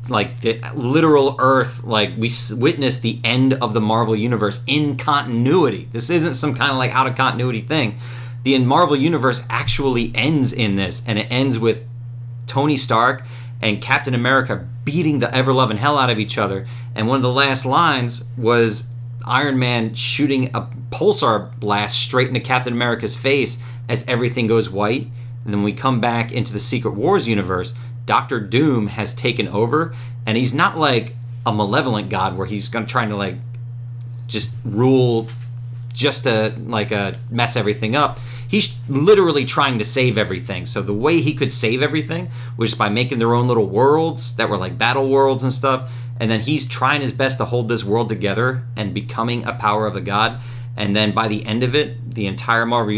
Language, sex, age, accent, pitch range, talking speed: English, male, 30-49, American, 115-130 Hz, 185 wpm